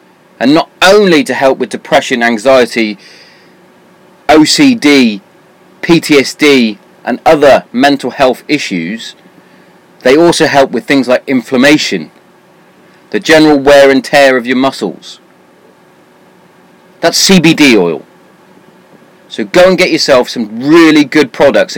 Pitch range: 130-185 Hz